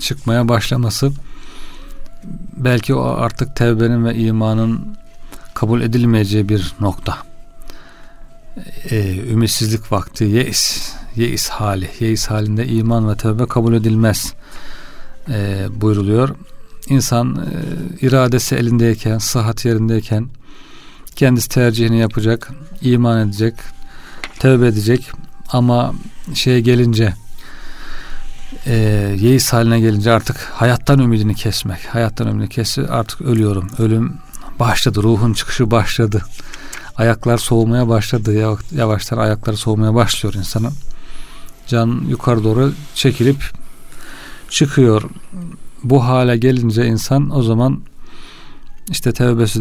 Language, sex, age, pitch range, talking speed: Turkish, male, 40-59, 110-125 Hz, 100 wpm